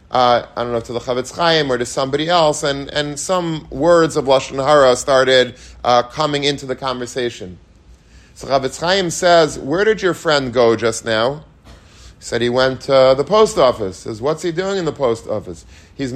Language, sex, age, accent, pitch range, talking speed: English, male, 40-59, American, 120-150 Hz, 200 wpm